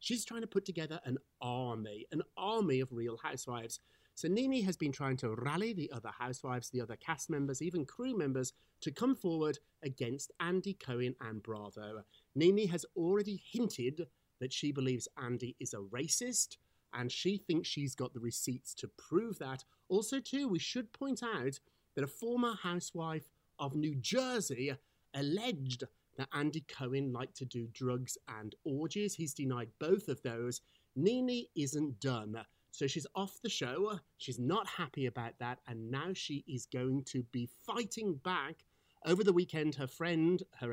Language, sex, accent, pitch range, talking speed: English, male, British, 125-185 Hz, 170 wpm